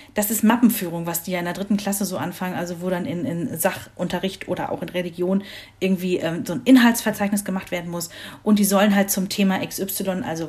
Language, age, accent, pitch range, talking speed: German, 40-59, German, 180-225 Hz, 215 wpm